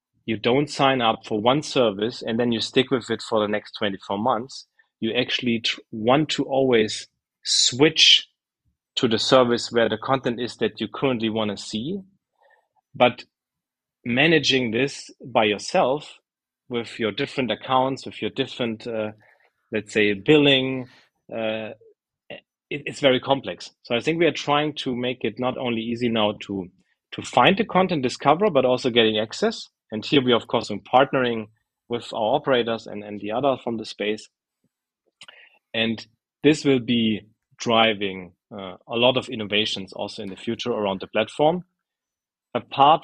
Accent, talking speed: German, 160 wpm